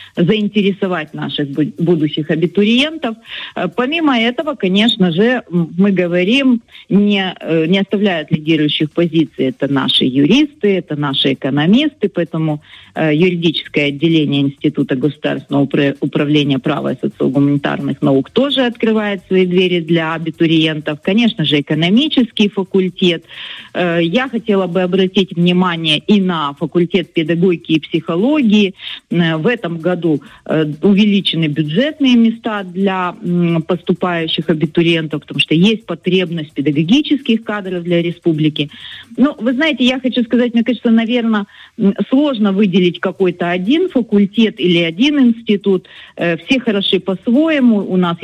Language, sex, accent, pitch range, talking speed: Russian, female, native, 160-220 Hz, 115 wpm